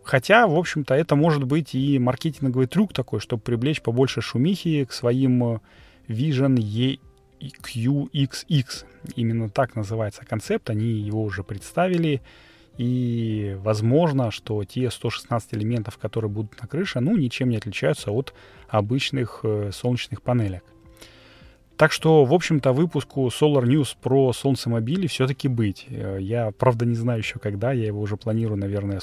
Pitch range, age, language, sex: 105-135 Hz, 30-49, Russian, male